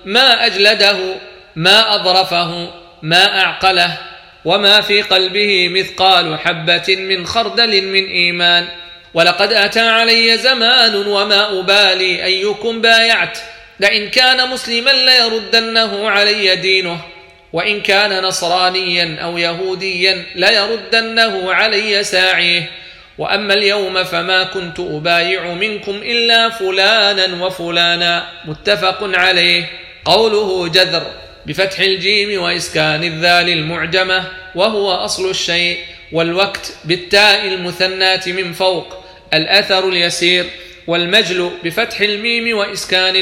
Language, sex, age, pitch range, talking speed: Arabic, male, 40-59, 175-205 Hz, 95 wpm